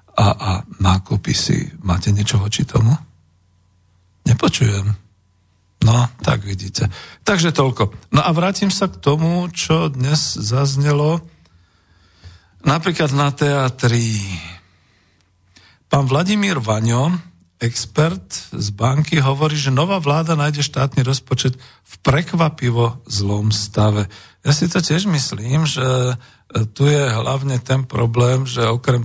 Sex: male